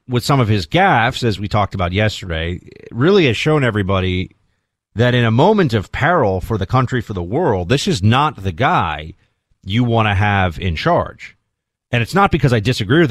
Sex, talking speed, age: male, 200 wpm, 40-59